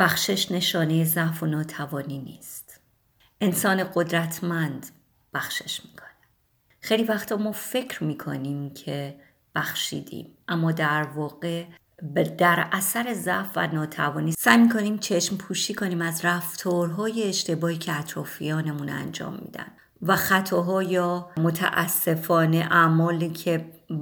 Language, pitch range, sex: Persian, 155-190 Hz, female